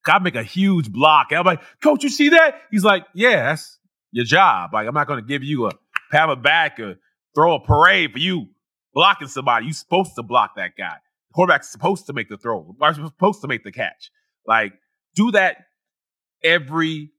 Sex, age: male, 30-49